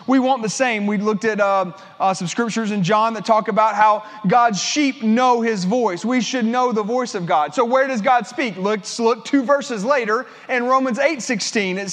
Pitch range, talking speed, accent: 220-260 Hz, 220 wpm, American